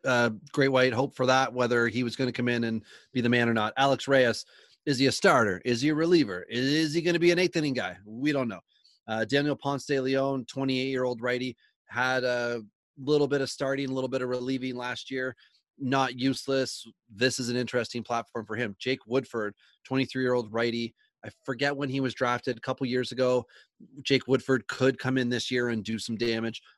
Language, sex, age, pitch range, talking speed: English, male, 30-49, 115-135 Hz, 215 wpm